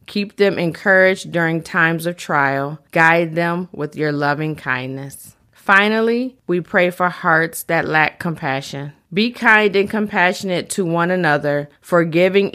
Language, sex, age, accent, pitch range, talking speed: English, female, 30-49, American, 155-195 Hz, 140 wpm